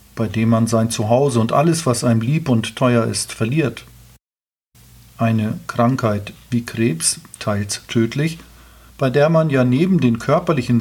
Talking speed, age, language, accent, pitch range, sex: 150 wpm, 40-59, German, German, 115-140 Hz, male